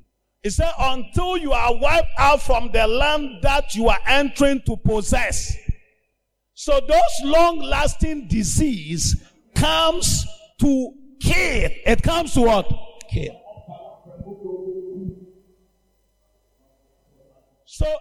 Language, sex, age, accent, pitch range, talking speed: English, male, 50-69, Nigerian, 215-310 Hz, 100 wpm